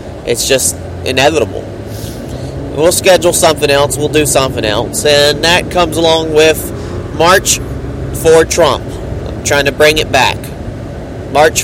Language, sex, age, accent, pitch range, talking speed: English, male, 30-49, American, 120-160 Hz, 135 wpm